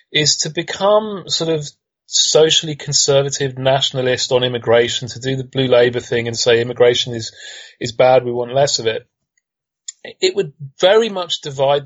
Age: 30-49